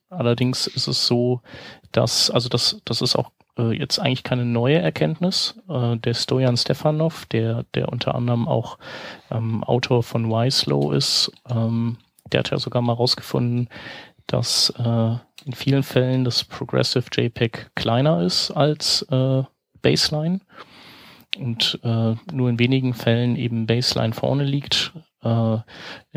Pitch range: 115-135 Hz